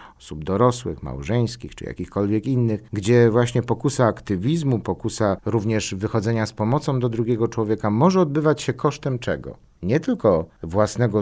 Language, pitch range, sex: Polish, 90-120 Hz, male